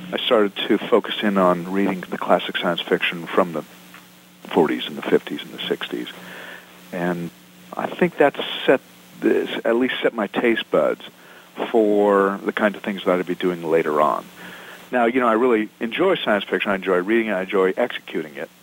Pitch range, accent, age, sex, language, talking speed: 85-105 Hz, American, 50-69, male, English, 190 wpm